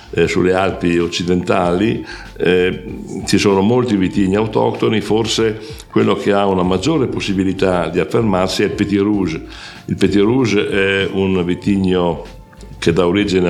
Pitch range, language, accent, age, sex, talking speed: 90-105 Hz, English, Italian, 60-79, male, 140 wpm